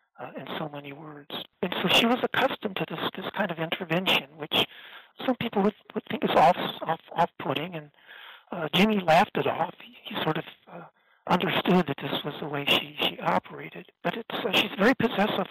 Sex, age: male, 60-79